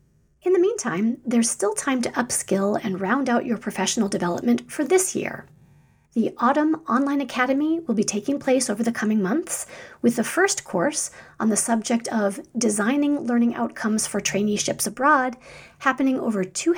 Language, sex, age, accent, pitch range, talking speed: English, female, 40-59, American, 220-295 Hz, 165 wpm